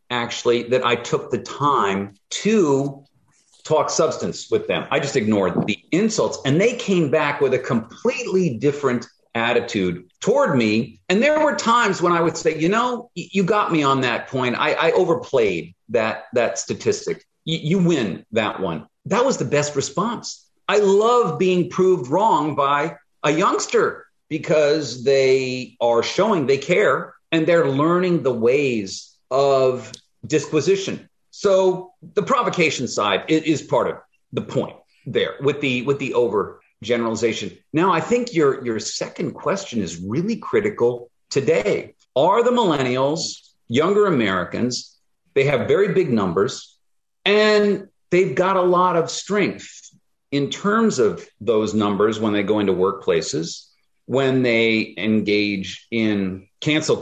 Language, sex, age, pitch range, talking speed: English, male, 40-59, 120-200 Hz, 145 wpm